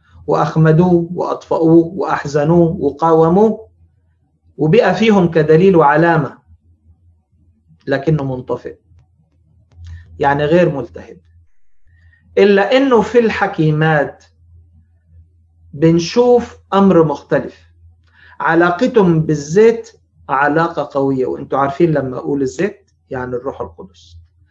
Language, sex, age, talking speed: Arabic, male, 40-59, 80 wpm